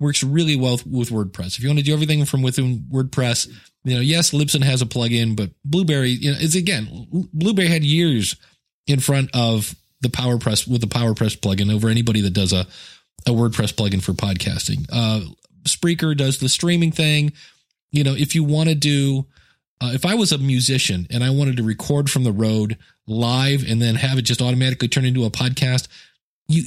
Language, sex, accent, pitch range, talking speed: English, male, American, 115-150 Hz, 200 wpm